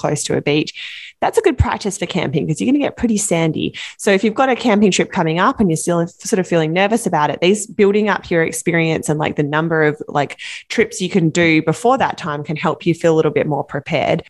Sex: female